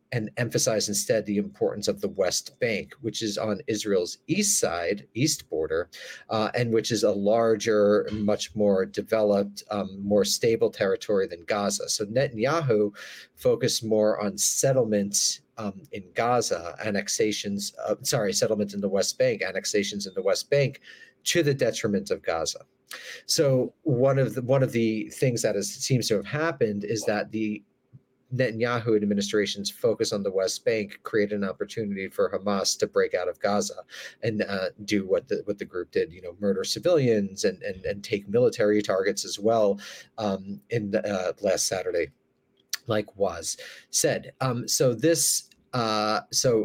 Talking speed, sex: 160 wpm, male